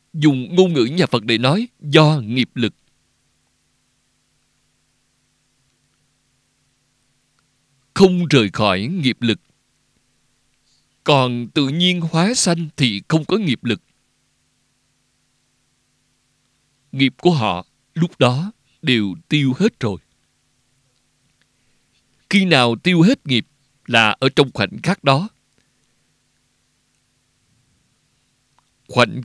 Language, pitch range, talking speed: Vietnamese, 125-160 Hz, 95 wpm